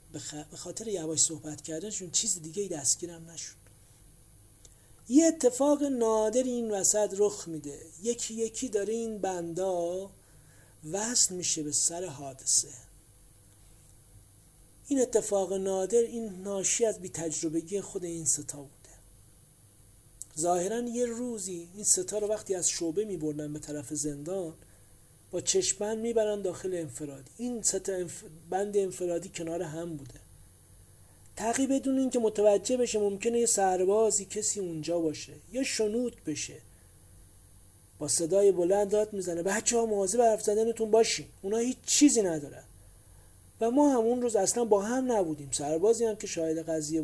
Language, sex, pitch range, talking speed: Persian, male, 150-215 Hz, 130 wpm